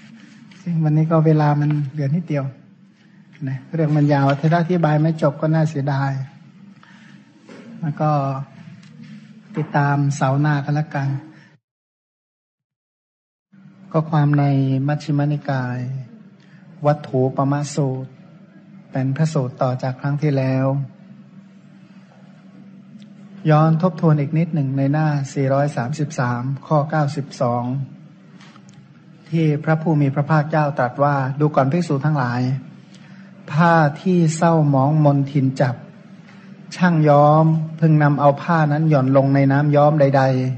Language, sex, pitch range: Thai, male, 140-180 Hz